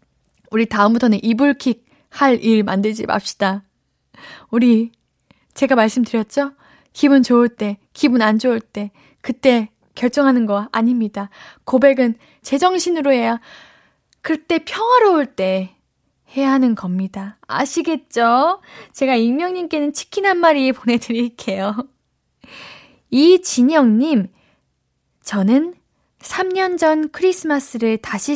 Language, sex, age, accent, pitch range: Korean, female, 10-29, native, 220-310 Hz